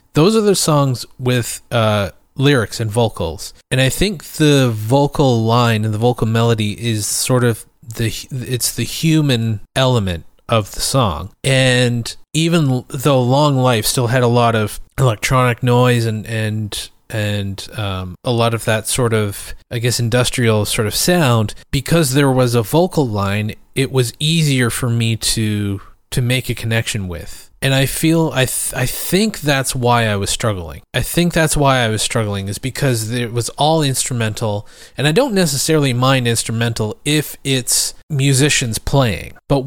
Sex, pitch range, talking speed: male, 110-135 Hz, 170 wpm